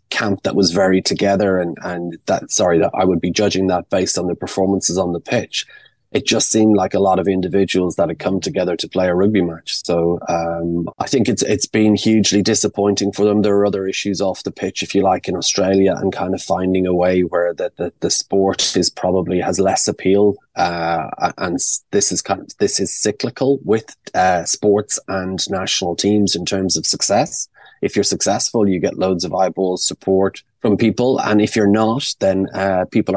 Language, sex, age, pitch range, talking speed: English, male, 20-39, 90-100 Hz, 210 wpm